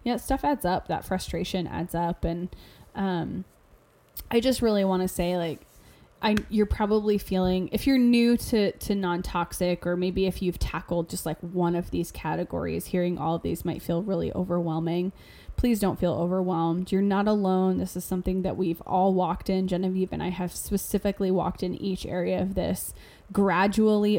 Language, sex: English, female